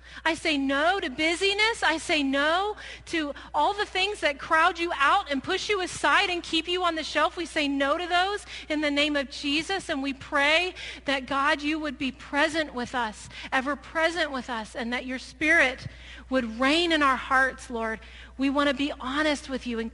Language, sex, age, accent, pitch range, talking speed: English, female, 40-59, American, 265-335 Hz, 210 wpm